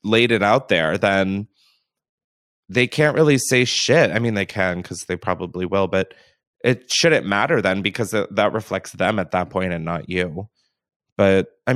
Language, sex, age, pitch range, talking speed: English, male, 20-39, 95-135 Hz, 180 wpm